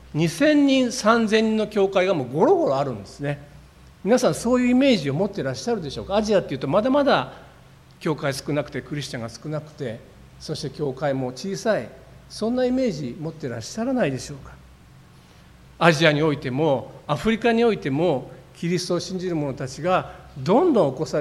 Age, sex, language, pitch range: 50-69, male, Japanese, 140-220 Hz